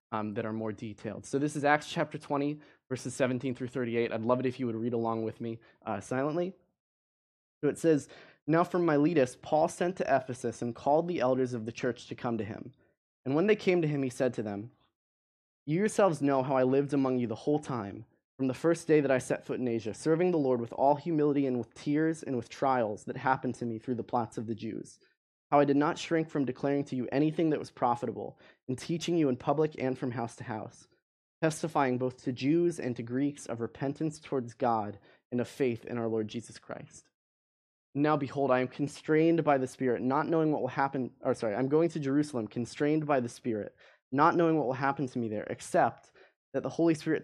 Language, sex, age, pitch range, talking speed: English, male, 20-39, 120-150 Hz, 225 wpm